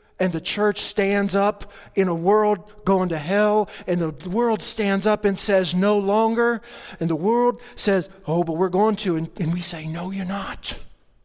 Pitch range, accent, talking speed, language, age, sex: 155-195 Hz, American, 190 wpm, English, 40-59, male